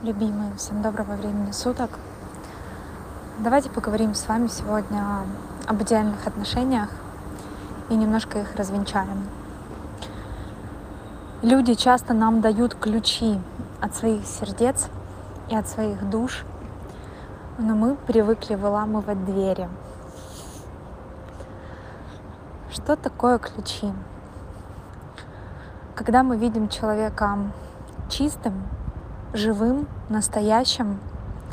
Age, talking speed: 20-39, 85 wpm